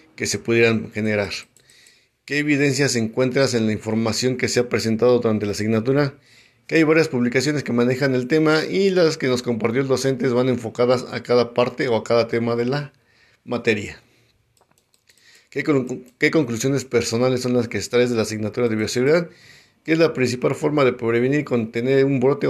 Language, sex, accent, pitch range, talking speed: Spanish, male, Mexican, 115-135 Hz, 185 wpm